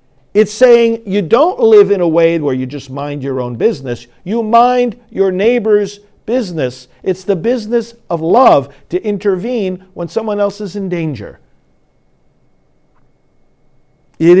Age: 50-69